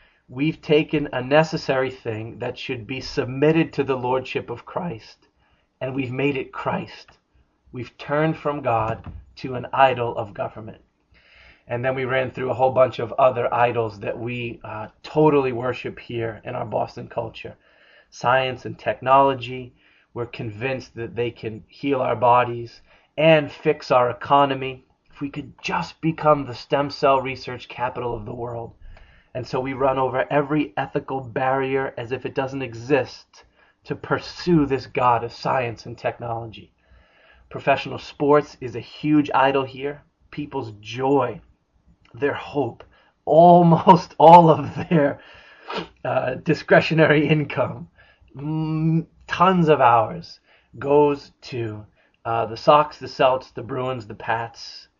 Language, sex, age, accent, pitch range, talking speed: English, male, 30-49, American, 120-145 Hz, 140 wpm